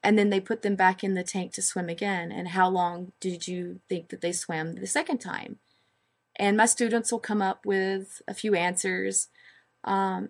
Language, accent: English, American